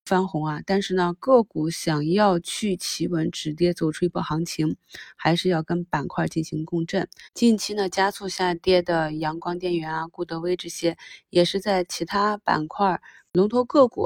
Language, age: Chinese, 20-39